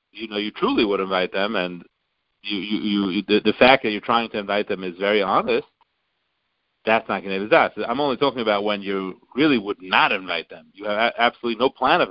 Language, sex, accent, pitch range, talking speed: English, male, American, 95-125 Hz, 225 wpm